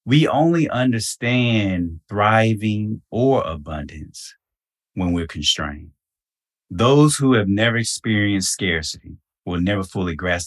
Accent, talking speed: American, 110 wpm